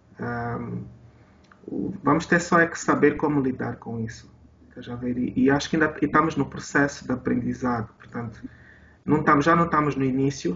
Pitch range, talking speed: 120-140 Hz, 170 wpm